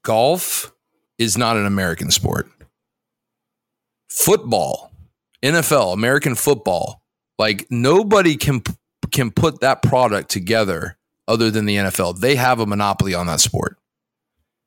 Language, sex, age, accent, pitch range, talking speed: English, male, 40-59, American, 110-140 Hz, 120 wpm